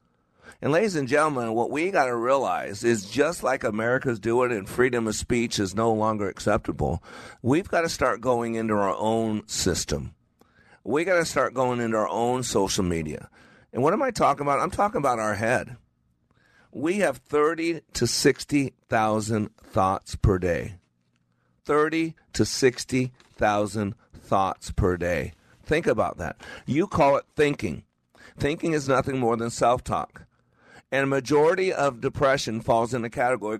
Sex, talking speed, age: male, 160 wpm, 50-69